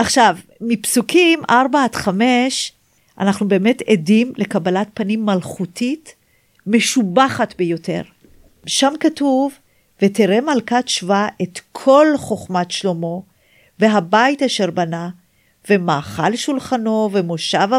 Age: 50-69